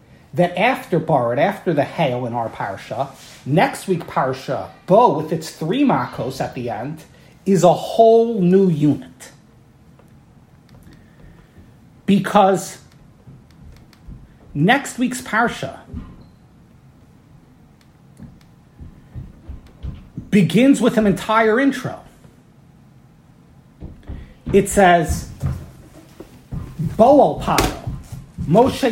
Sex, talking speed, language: male, 80 wpm, English